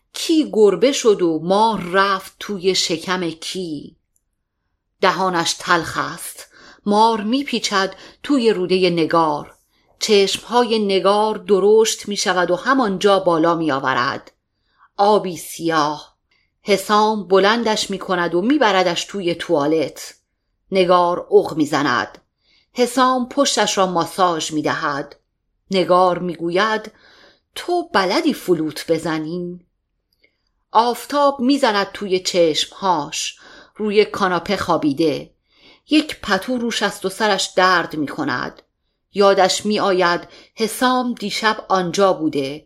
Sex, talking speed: female, 105 wpm